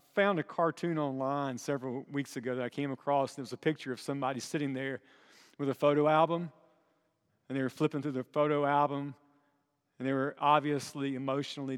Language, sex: English, male